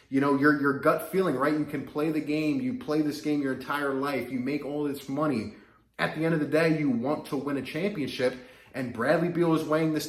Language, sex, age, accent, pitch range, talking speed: English, male, 20-39, American, 120-155 Hz, 250 wpm